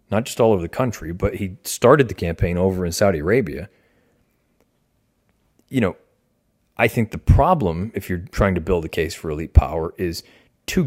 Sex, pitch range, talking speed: male, 90-110 Hz, 180 wpm